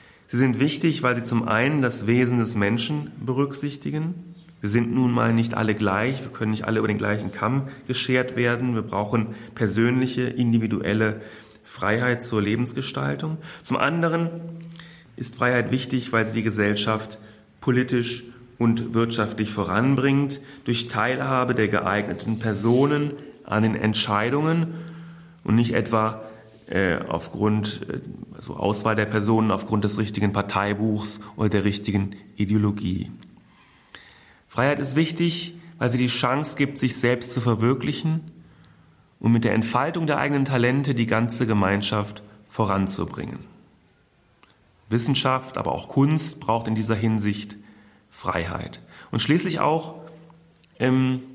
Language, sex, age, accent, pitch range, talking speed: German, male, 30-49, German, 105-130 Hz, 125 wpm